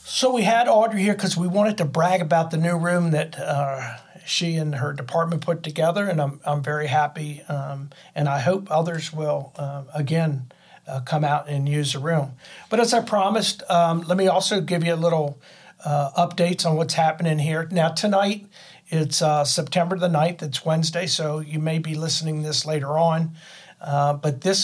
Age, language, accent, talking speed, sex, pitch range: 50-69, English, American, 195 wpm, male, 145-170 Hz